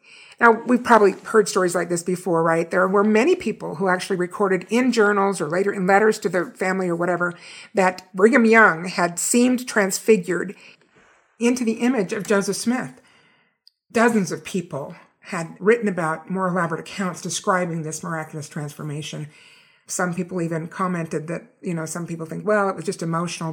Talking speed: 170 wpm